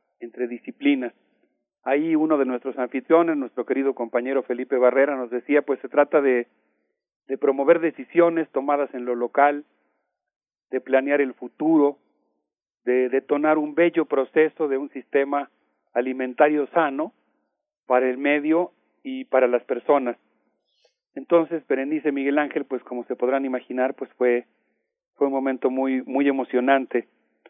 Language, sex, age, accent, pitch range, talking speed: Spanish, male, 40-59, Mexican, 125-155 Hz, 135 wpm